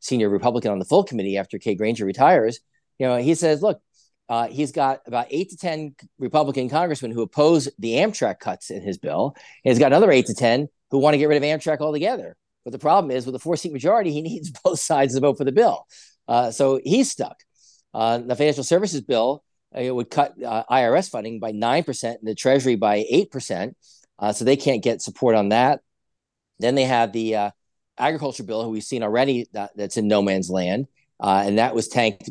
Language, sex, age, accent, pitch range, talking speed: English, male, 40-59, American, 110-145 Hz, 220 wpm